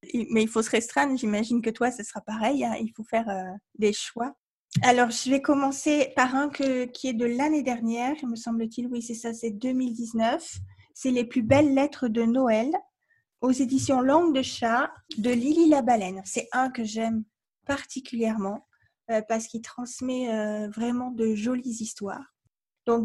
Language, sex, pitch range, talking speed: French, female, 210-255 Hz, 180 wpm